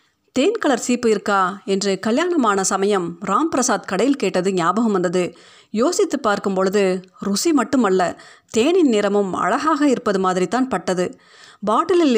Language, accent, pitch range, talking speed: Tamil, native, 190-250 Hz, 115 wpm